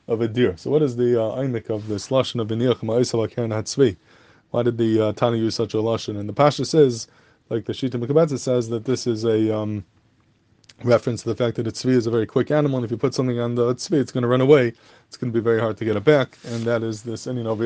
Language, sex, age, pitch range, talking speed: English, male, 20-39, 110-125 Hz, 270 wpm